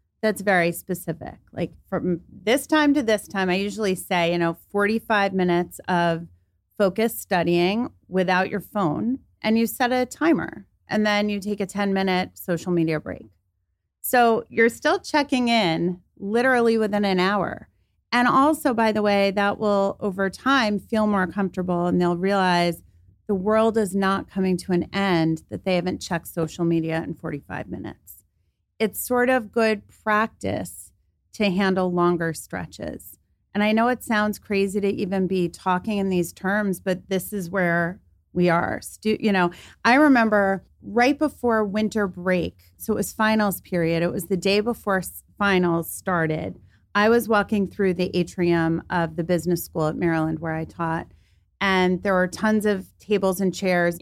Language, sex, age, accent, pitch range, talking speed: English, female, 30-49, American, 170-210 Hz, 165 wpm